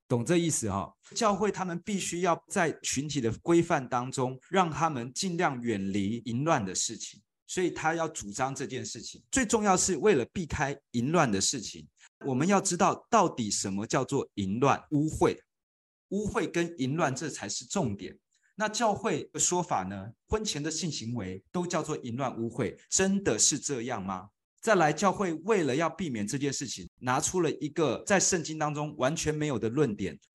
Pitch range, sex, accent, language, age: 115-170 Hz, male, native, Chinese, 20-39